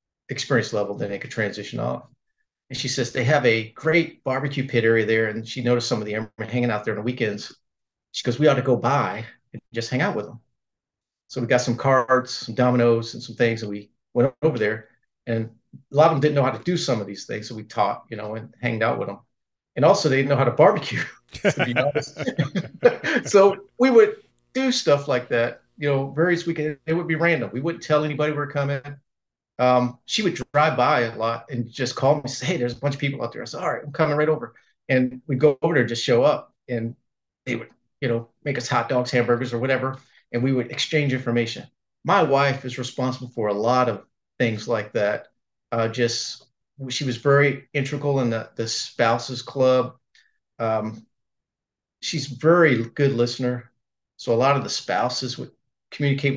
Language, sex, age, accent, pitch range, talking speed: English, male, 40-59, American, 120-145 Hz, 220 wpm